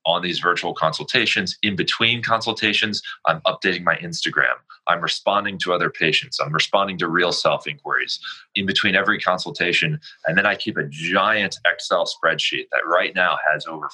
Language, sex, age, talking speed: English, male, 20-39, 165 wpm